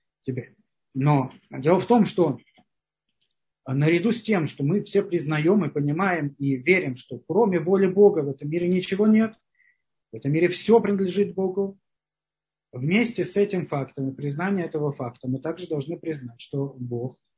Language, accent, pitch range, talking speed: Russian, native, 140-195 Hz, 160 wpm